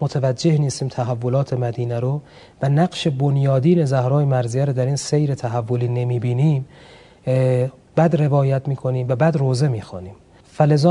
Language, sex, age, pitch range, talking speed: Persian, male, 40-59, 125-160 Hz, 150 wpm